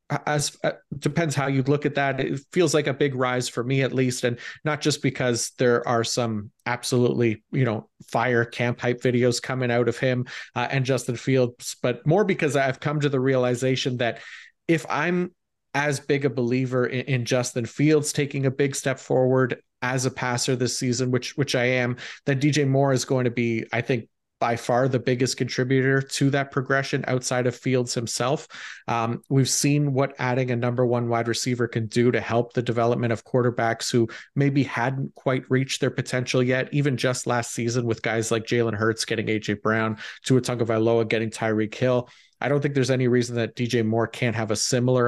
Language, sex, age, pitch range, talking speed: English, male, 30-49, 120-135 Hz, 200 wpm